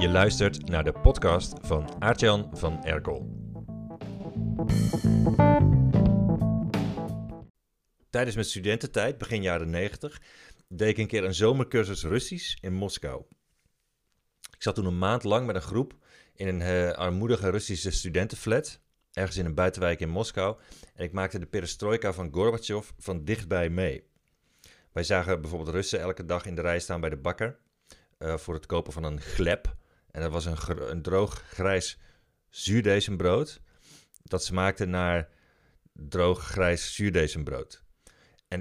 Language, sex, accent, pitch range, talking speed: Dutch, male, Dutch, 80-100 Hz, 140 wpm